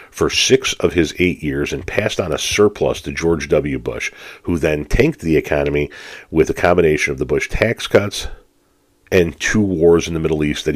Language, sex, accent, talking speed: English, male, American, 200 wpm